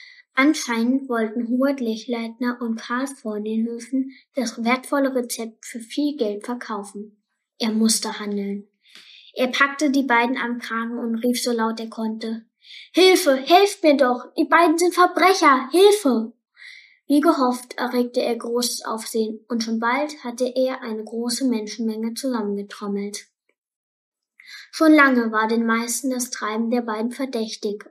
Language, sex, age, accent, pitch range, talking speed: German, female, 10-29, German, 225-275 Hz, 140 wpm